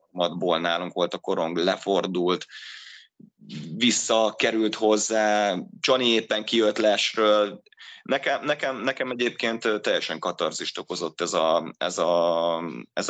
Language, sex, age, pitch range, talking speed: Hungarian, male, 30-49, 90-115 Hz, 110 wpm